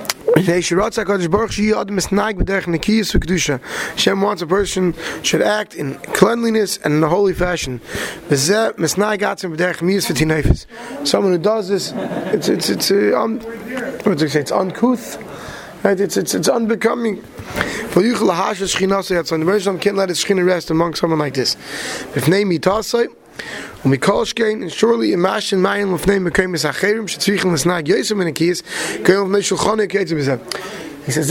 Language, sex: English, male